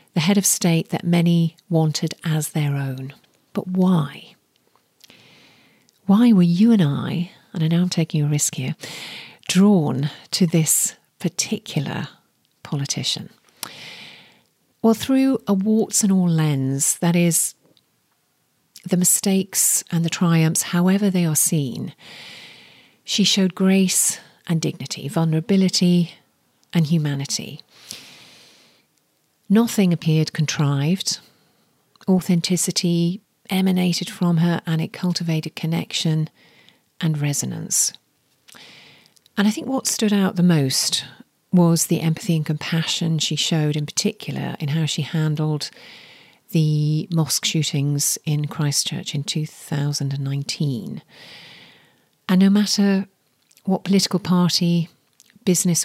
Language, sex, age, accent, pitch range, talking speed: English, female, 40-59, British, 155-185 Hz, 110 wpm